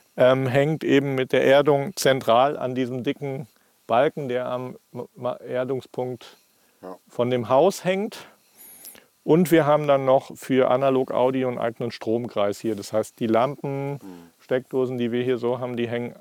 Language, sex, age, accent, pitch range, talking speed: German, male, 40-59, German, 105-130 Hz, 150 wpm